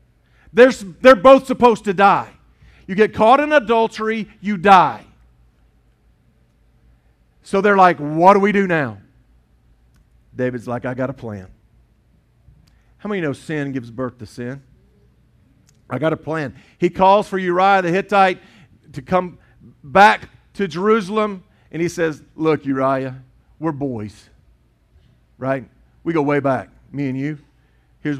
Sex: male